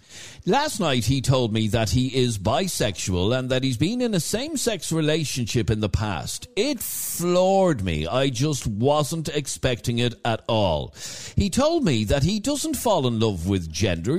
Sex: male